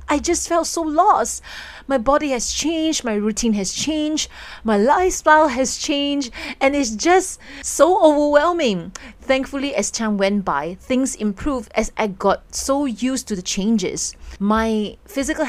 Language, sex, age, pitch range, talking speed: English, female, 30-49, 185-250 Hz, 150 wpm